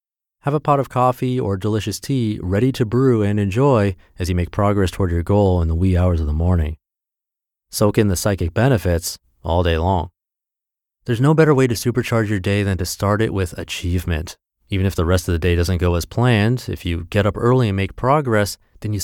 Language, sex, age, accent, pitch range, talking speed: English, male, 30-49, American, 90-120 Hz, 220 wpm